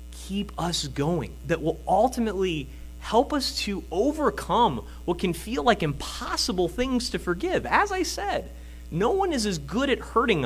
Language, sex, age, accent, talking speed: English, male, 30-49, American, 160 wpm